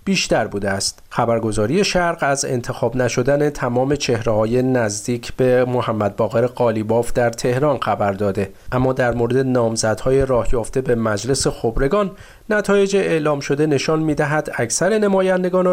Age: 40-59